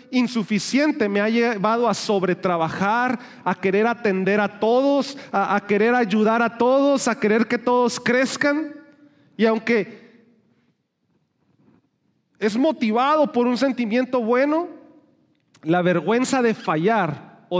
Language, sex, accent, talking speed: English, male, Mexican, 120 wpm